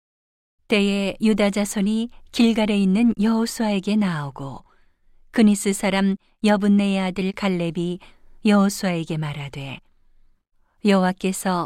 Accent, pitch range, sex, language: native, 175-205 Hz, female, Korean